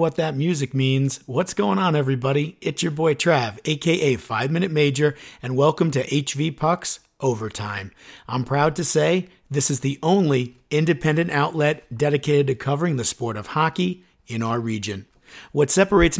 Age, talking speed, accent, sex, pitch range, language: 50-69, 160 wpm, American, male, 130-160 Hz, English